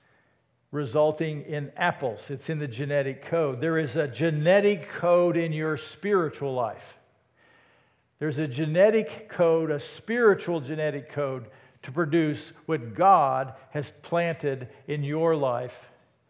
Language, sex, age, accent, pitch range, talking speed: English, male, 50-69, American, 140-175 Hz, 125 wpm